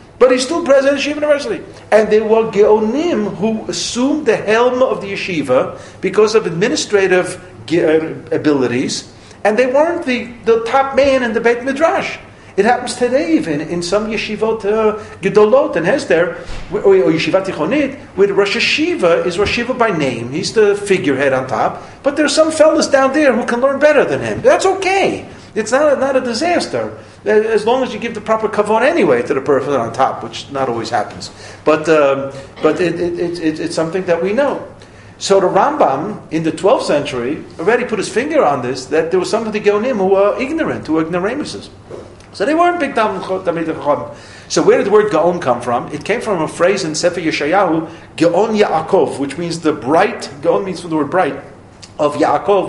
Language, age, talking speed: English, 50-69, 200 wpm